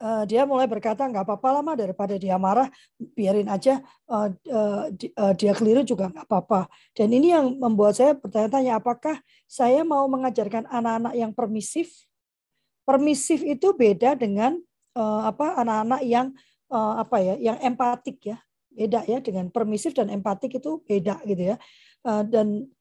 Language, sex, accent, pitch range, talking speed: Indonesian, female, native, 210-265 Hz, 135 wpm